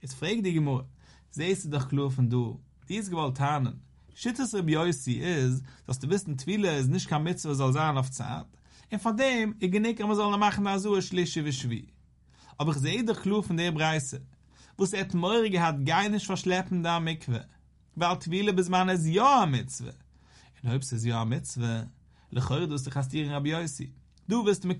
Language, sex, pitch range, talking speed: English, male, 125-170 Hz, 105 wpm